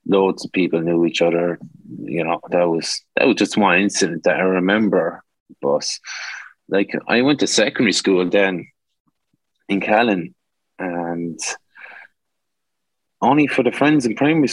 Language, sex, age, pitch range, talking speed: English, male, 20-39, 80-100 Hz, 145 wpm